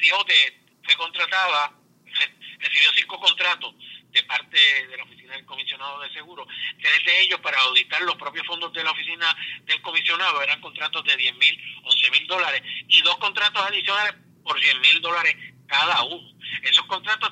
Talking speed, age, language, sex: 165 wpm, 50-69, Spanish, male